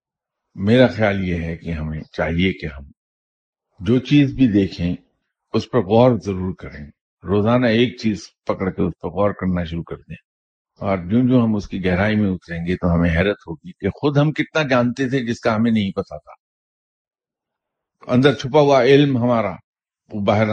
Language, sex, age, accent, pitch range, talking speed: English, male, 50-69, Indian, 90-120 Hz, 170 wpm